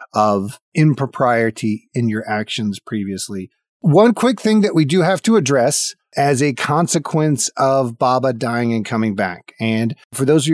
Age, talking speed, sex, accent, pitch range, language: 40-59, 165 wpm, male, American, 115-155 Hz, English